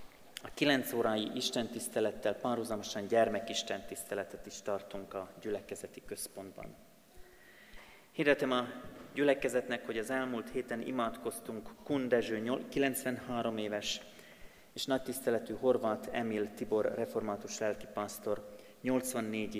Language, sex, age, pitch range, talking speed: Hungarian, male, 30-49, 105-125 Hz, 100 wpm